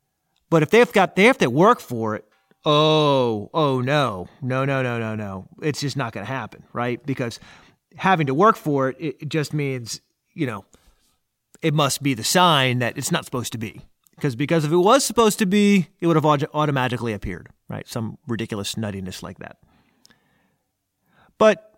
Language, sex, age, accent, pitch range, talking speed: English, male, 30-49, American, 125-185 Hz, 185 wpm